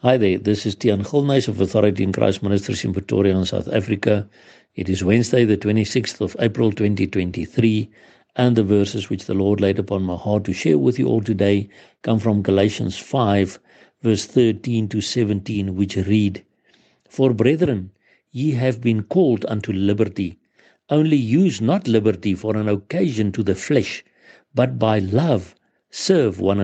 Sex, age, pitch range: male, 60-79, 100-120 Hz